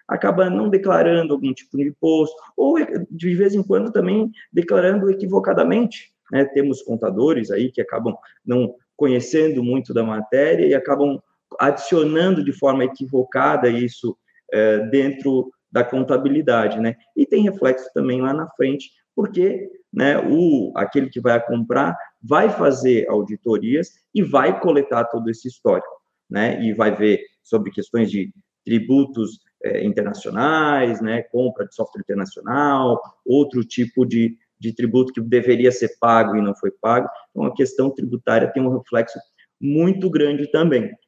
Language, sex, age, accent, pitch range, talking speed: Portuguese, male, 20-39, Brazilian, 115-150 Hz, 140 wpm